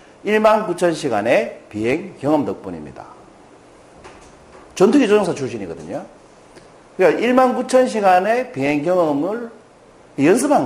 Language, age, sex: Korean, 40-59, male